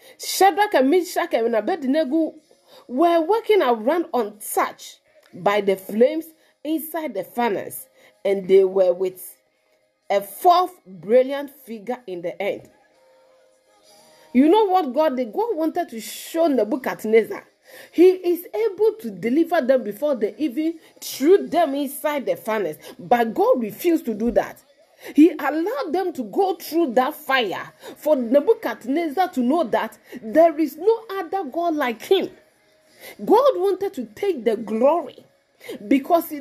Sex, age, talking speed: female, 40-59, 135 wpm